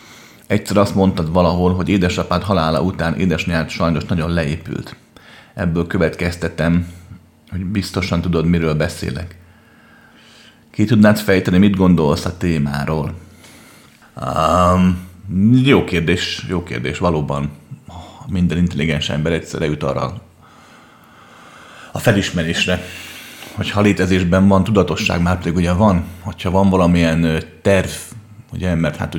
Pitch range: 80-90 Hz